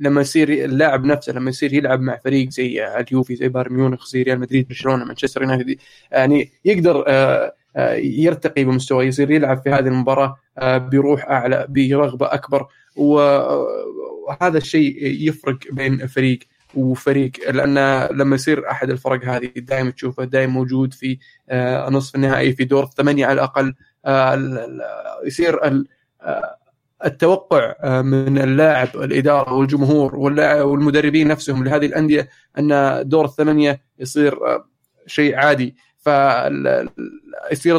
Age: 20-39